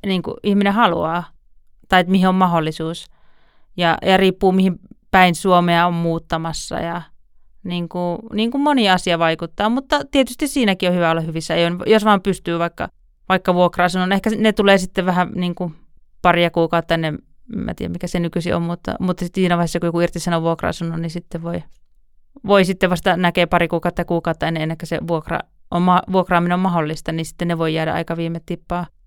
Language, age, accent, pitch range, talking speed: Finnish, 30-49, native, 170-185 Hz, 180 wpm